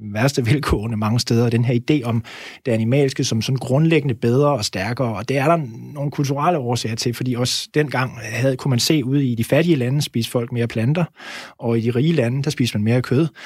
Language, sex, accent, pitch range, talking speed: Danish, male, native, 120-145 Hz, 225 wpm